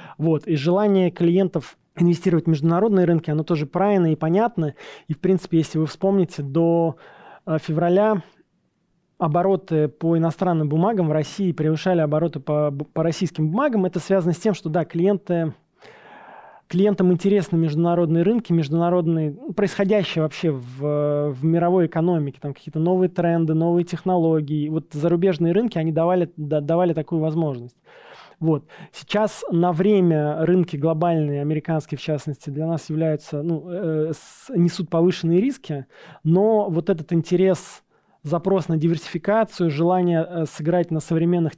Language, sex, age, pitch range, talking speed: Russian, male, 20-39, 155-180 Hz, 140 wpm